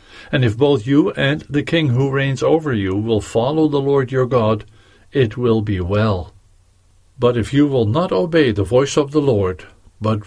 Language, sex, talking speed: English, male, 195 wpm